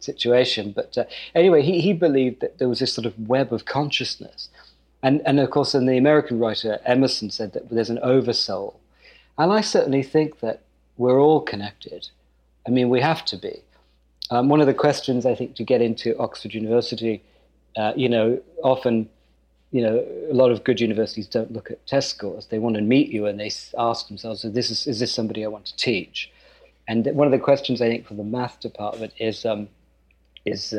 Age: 40-59